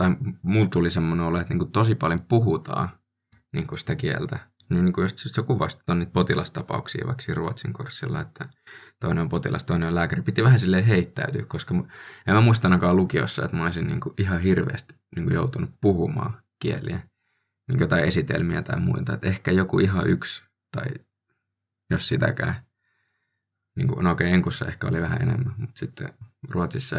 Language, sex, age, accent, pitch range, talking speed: Finnish, male, 20-39, native, 90-125 Hz, 160 wpm